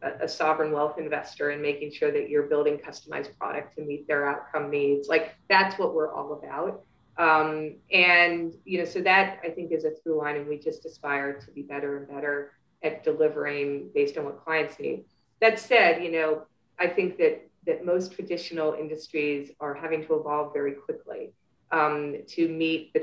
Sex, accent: female, American